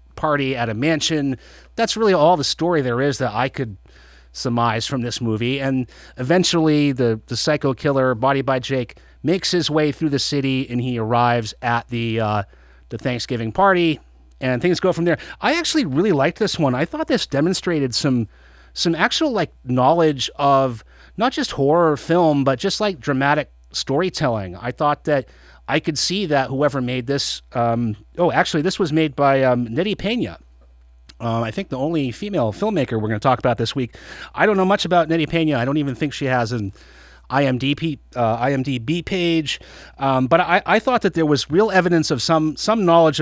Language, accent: English, American